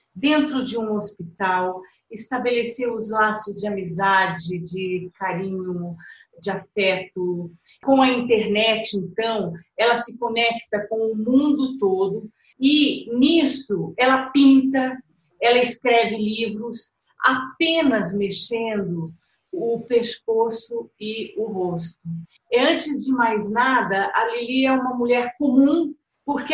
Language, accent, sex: Portuguese, Brazilian, female